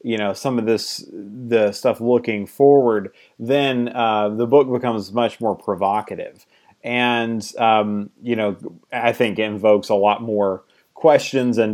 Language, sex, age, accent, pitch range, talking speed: English, male, 30-49, American, 110-130 Hz, 150 wpm